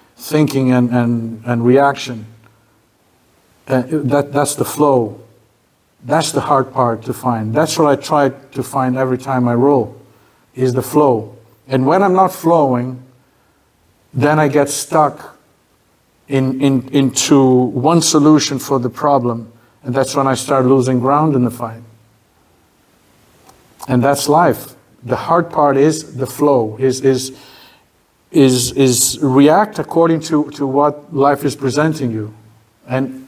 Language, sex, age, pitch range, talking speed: English, male, 50-69, 120-145 Hz, 140 wpm